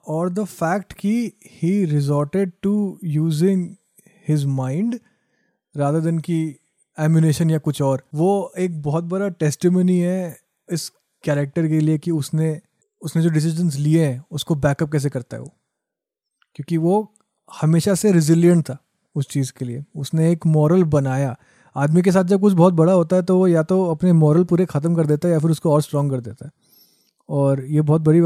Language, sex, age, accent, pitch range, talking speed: Hindi, male, 30-49, native, 145-185 Hz, 185 wpm